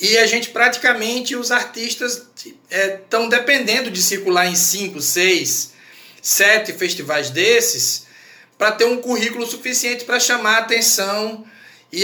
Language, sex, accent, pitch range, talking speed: Portuguese, male, Brazilian, 185-235 Hz, 135 wpm